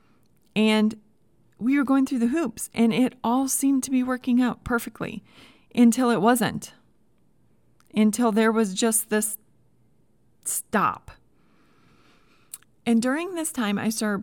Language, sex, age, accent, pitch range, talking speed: English, female, 30-49, American, 190-250 Hz, 130 wpm